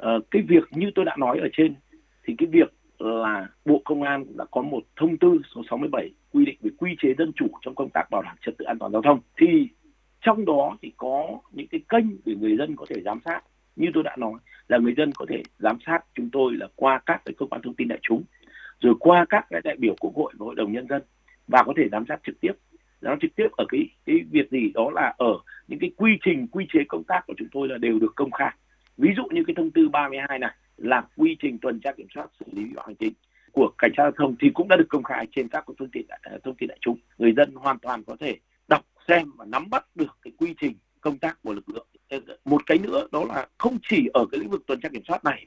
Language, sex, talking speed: Vietnamese, male, 265 wpm